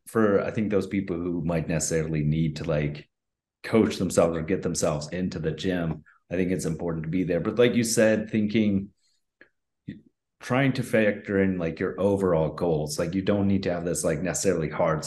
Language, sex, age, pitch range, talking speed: English, male, 30-49, 85-100 Hz, 195 wpm